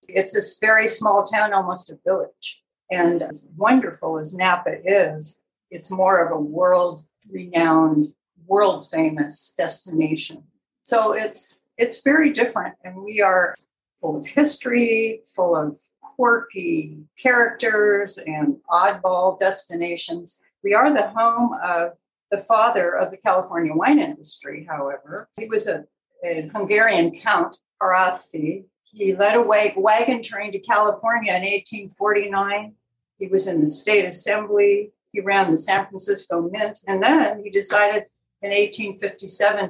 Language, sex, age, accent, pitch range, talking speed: English, female, 60-79, American, 170-215 Hz, 130 wpm